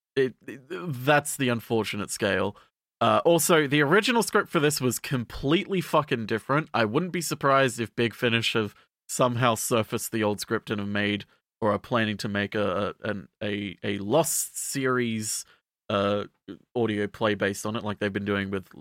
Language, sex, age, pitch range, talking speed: English, male, 30-49, 110-160 Hz, 175 wpm